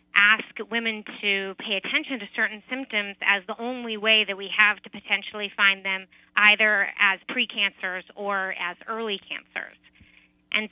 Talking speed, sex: 150 wpm, female